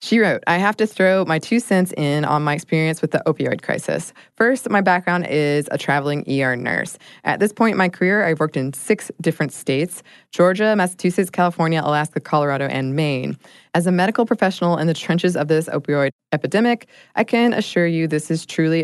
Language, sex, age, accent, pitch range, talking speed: English, female, 20-39, American, 145-185 Hz, 200 wpm